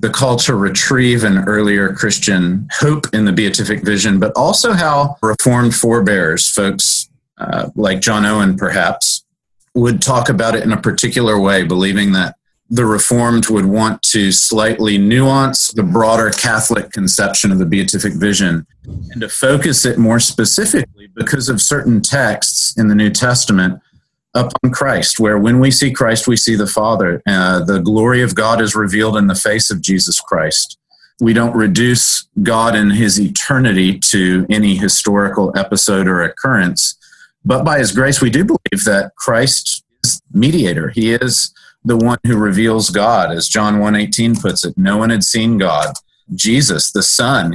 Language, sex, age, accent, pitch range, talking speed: English, male, 40-59, American, 100-120 Hz, 165 wpm